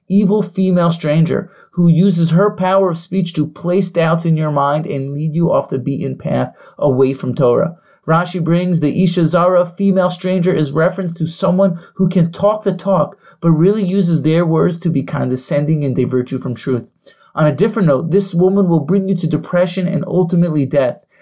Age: 30-49